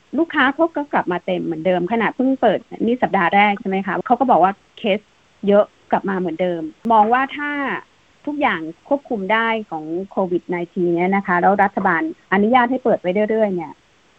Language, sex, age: Thai, female, 30-49